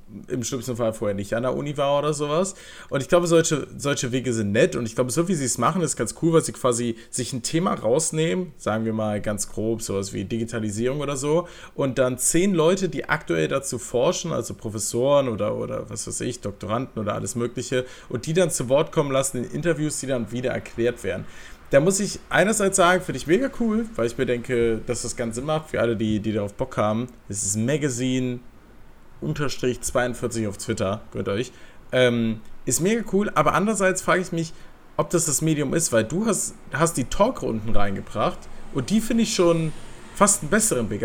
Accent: German